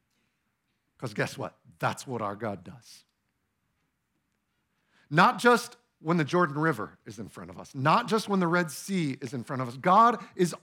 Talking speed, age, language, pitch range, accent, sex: 180 wpm, 50-69, English, 155-225 Hz, American, male